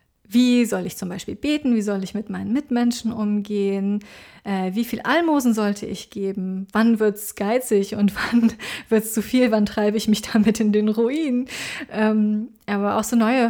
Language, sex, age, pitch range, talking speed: German, female, 30-49, 205-235 Hz, 190 wpm